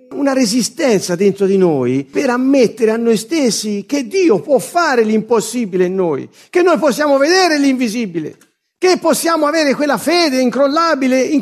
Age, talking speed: 50-69, 150 wpm